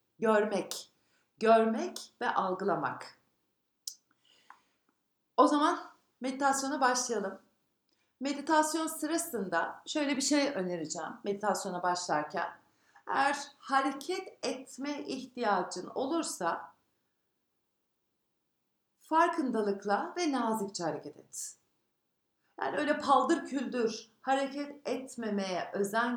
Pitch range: 200-280 Hz